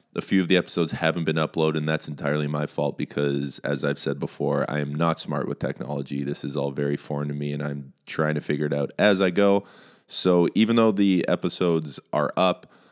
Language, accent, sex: English, American, male